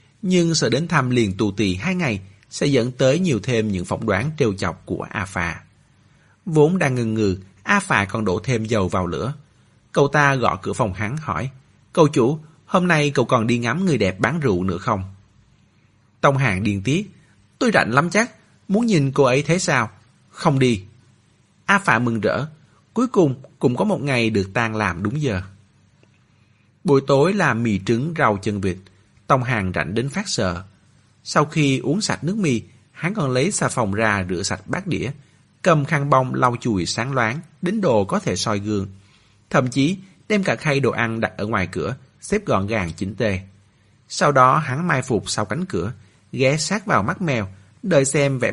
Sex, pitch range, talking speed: male, 105-145 Hz, 195 wpm